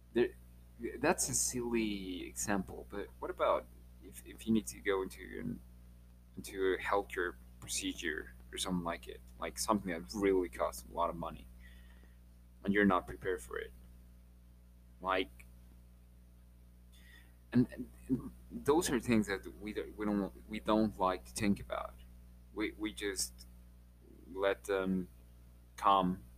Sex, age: male, 20-39